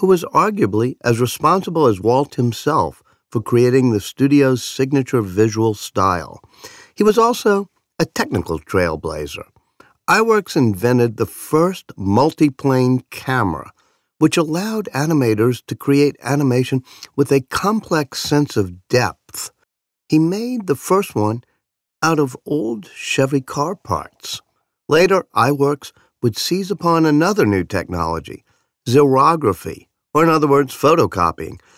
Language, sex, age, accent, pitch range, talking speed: English, male, 50-69, American, 110-160 Hz, 120 wpm